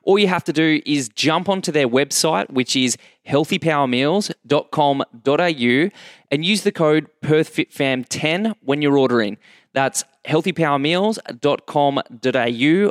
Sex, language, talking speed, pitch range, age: male, English, 105 wpm, 130-155 Hz, 20-39